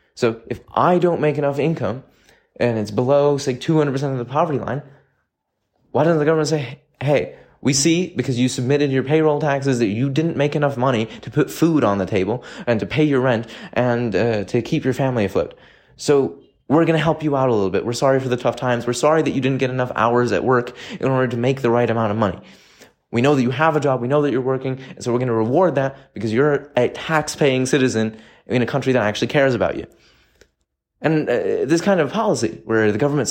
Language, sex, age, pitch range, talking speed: English, male, 20-39, 125-155 Hz, 235 wpm